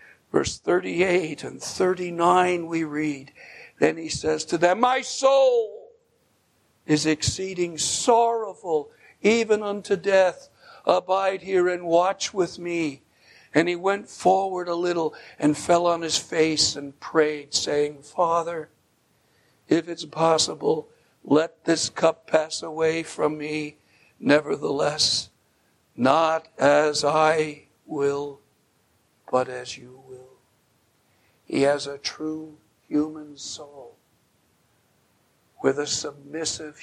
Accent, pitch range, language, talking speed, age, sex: American, 150-180 Hz, English, 110 wpm, 60-79, male